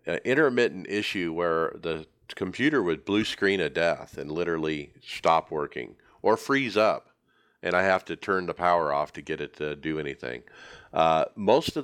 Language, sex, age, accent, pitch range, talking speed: English, male, 50-69, American, 85-110 Hz, 175 wpm